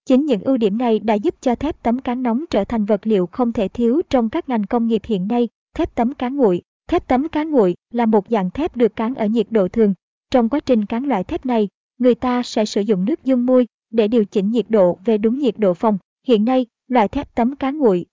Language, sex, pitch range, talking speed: Vietnamese, male, 215-255 Hz, 250 wpm